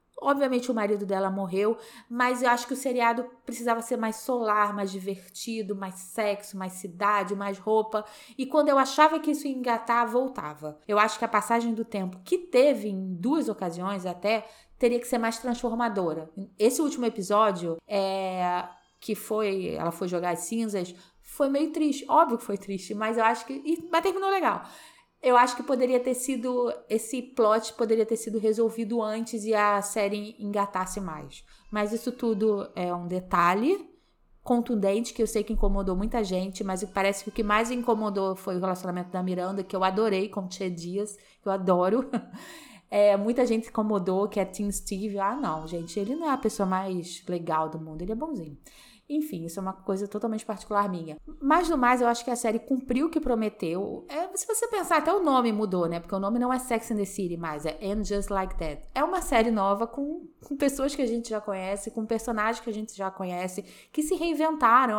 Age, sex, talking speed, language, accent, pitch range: 20-39, female, 200 wpm, Portuguese, Brazilian, 195-245 Hz